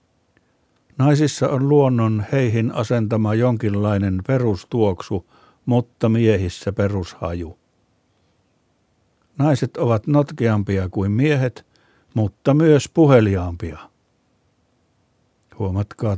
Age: 60-79